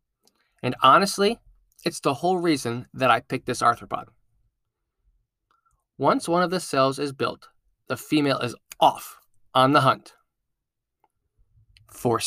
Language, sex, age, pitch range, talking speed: English, male, 20-39, 120-160 Hz, 125 wpm